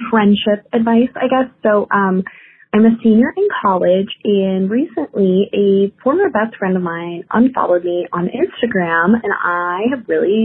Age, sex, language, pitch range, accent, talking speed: 20-39, female, English, 175-230 Hz, American, 155 wpm